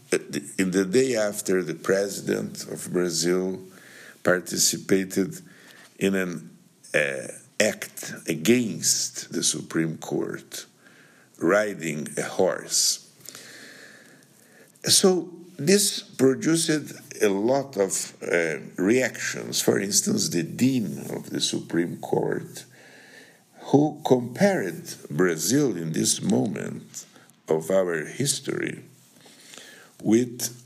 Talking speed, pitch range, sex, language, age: 90 wpm, 95-125 Hz, male, English, 60-79